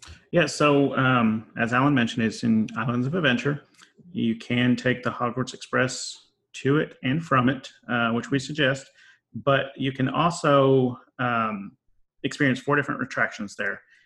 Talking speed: 155 wpm